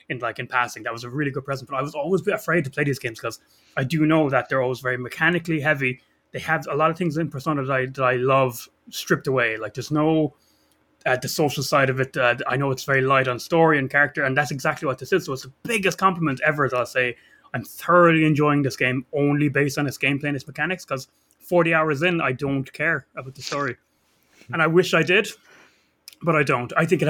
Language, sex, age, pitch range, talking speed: English, male, 20-39, 130-155 Hz, 255 wpm